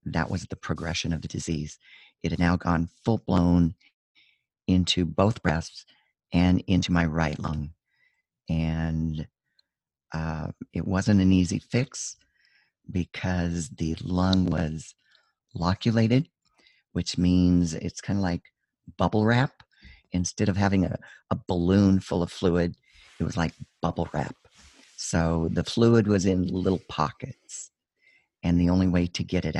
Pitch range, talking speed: 85-100 Hz, 140 wpm